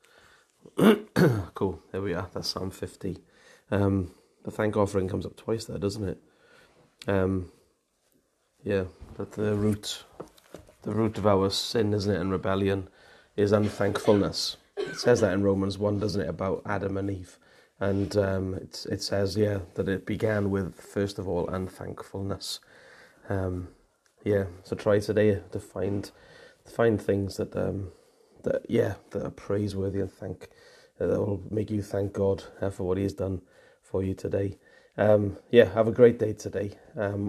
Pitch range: 95-105 Hz